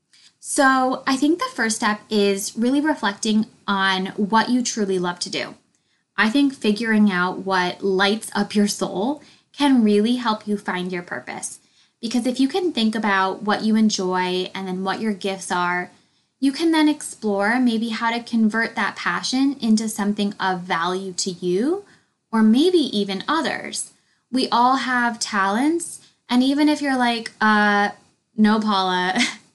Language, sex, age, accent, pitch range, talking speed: English, female, 10-29, American, 195-245 Hz, 160 wpm